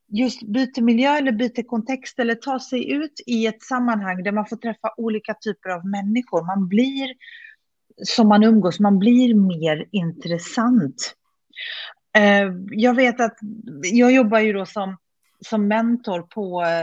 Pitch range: 190-245 Hz